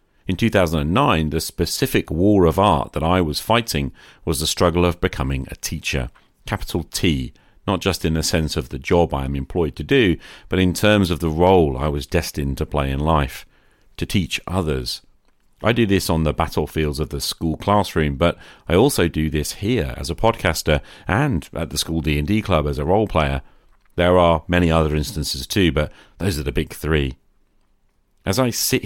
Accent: British